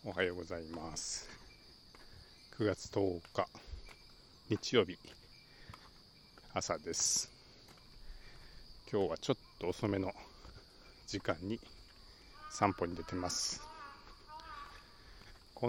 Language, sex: Japanese, male